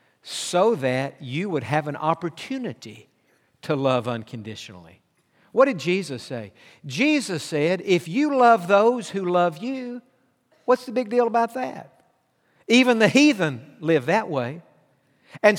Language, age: English, 60-79